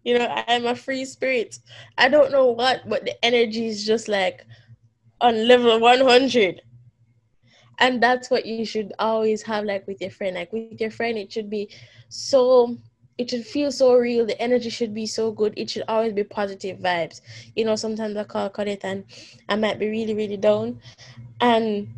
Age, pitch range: 10-29, 205-275 Hz